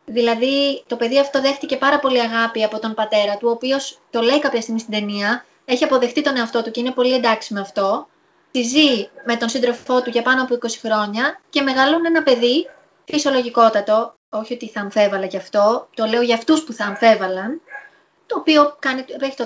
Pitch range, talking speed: 225-290 Hz, 195 wpm